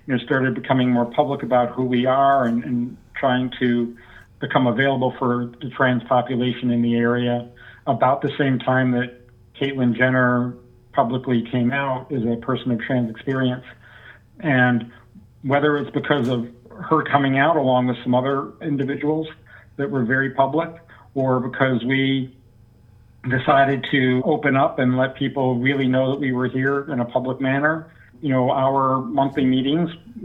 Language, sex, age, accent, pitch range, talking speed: English, male, 50-69, American, 120-140 Hz, 160 wpm